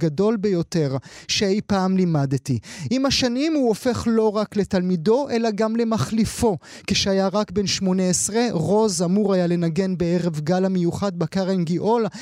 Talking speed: 140 wpm